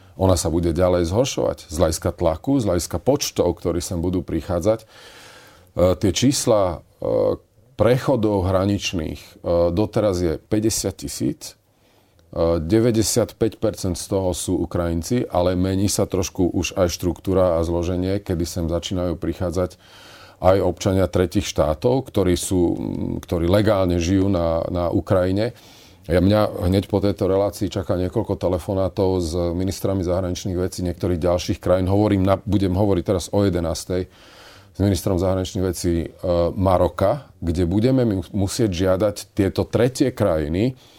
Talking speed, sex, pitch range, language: 130 wpm, male, 90-100 Hz, Slovak